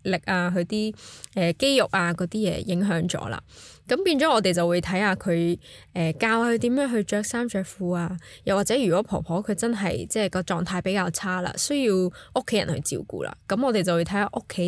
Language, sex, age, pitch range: Chinese, female, 10-29, 170-210 Hz